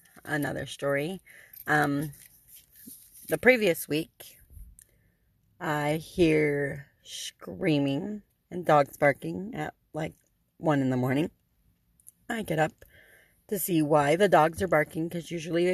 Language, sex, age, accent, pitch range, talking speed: English, female, 30-49, American, 140-175 Hz, 115 wpm